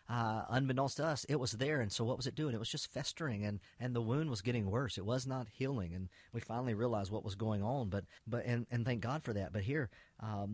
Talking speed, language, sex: 270 wpm, English, male